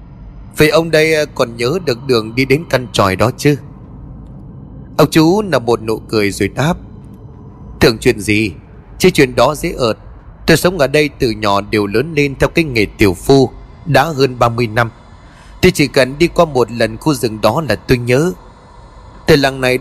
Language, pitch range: Vietnamese, 115-160 Hz